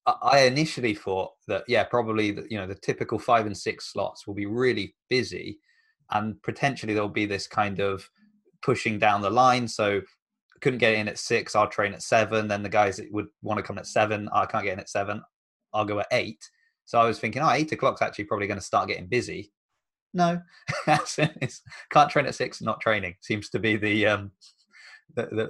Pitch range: 100-120 Hz